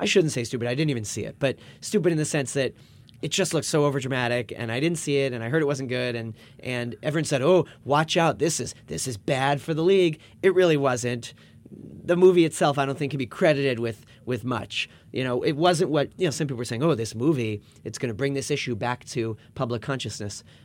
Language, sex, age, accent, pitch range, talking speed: English, male, 30-49, American, 115-145 Hz, 245 wpm